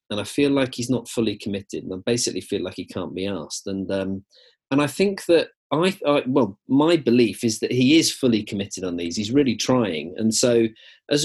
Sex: male